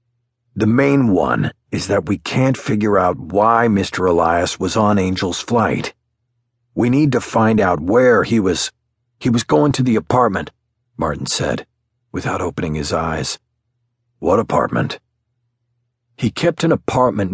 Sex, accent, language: male, American, English